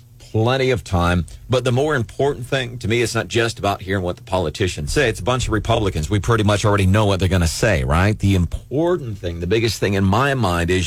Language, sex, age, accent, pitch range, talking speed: English, male, 40-59, American, 75-120 Hz, 250 wpm